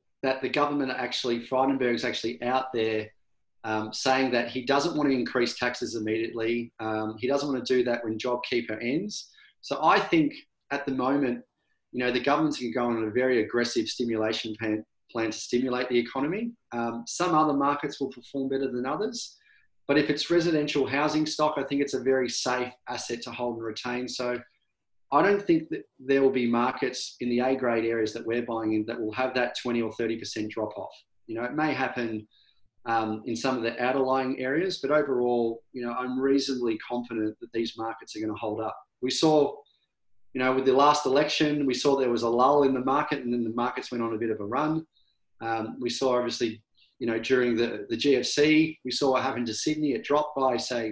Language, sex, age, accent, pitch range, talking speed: English, male, 30-49, Australian, 115-140 Hz, 210 wpm